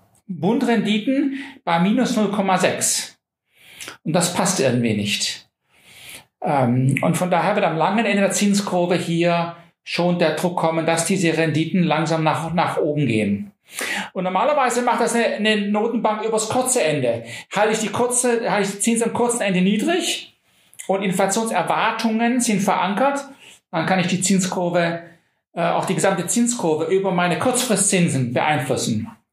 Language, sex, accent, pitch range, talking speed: German, male, German, 155-210 Hz, 145 wpm